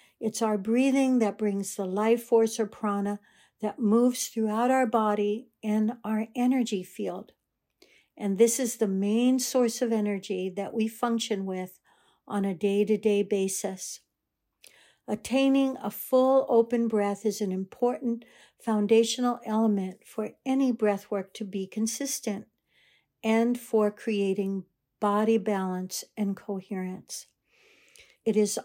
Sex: female